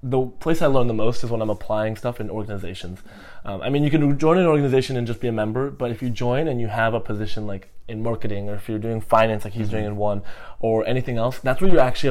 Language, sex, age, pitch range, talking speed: English, male, 20-39, 110-130 Hz, 275 wpm